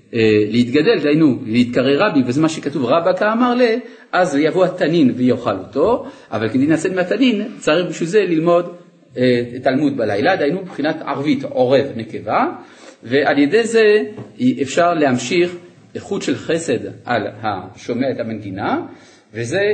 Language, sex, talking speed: Hebrew, male, 135 wpm